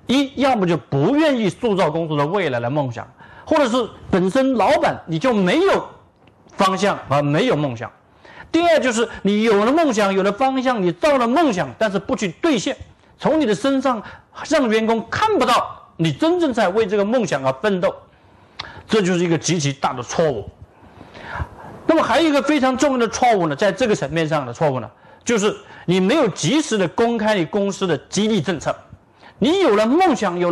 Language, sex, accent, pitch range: Chinese, male, native, 175-265 Hz